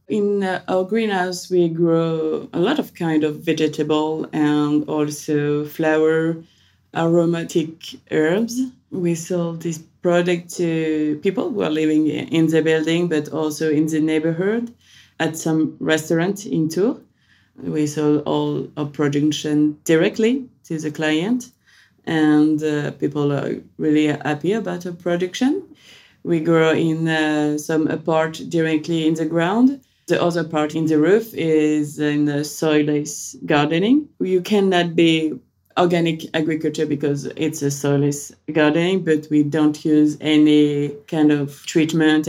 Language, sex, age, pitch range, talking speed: English, female, 20-39, 150-170 Hz, 135 wpm